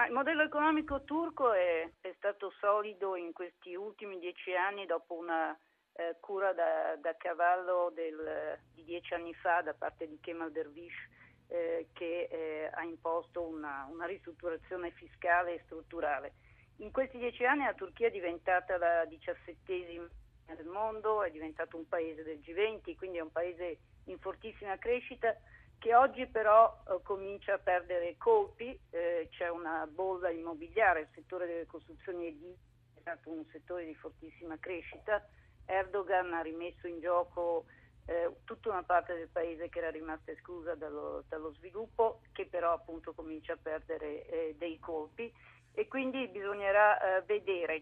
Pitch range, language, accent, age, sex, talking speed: 165-200 Hz, Italian, native, 40-59, female, 155 wpm